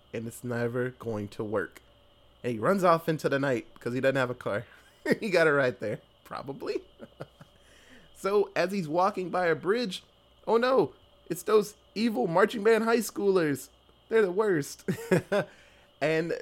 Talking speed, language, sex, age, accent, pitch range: 165 wpm, English, male, 20-39, American, 135-195 Hz